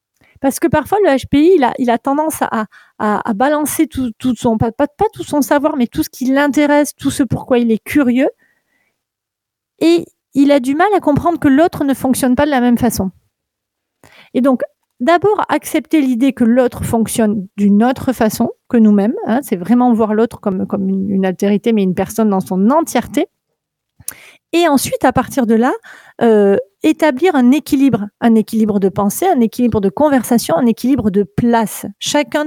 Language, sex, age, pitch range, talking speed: French, female, 40-59, 215-280 Hz, 185 wpm